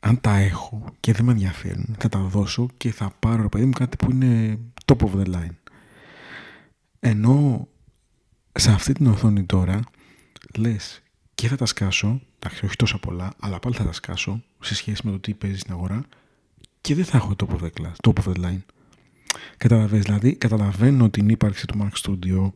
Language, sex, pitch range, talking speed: Greek, male, 100-115 Hz, 185 wpm